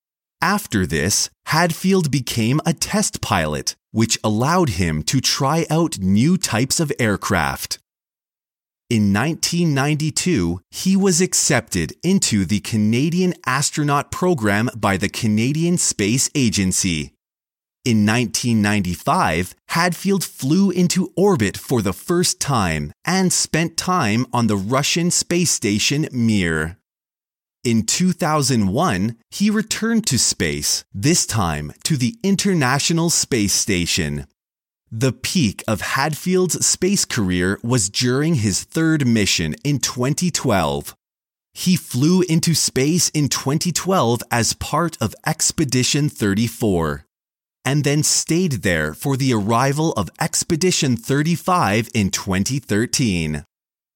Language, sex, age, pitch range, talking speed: English, male, 30-49, 105-165 Hz, 110 wpm